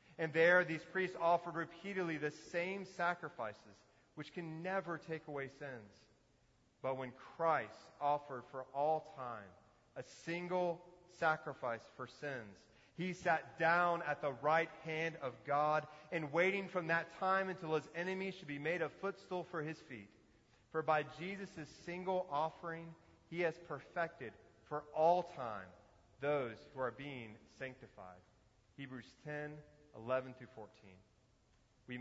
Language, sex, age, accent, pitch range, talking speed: English, male, 30-49, American, 125-170 Hz, 140 wpm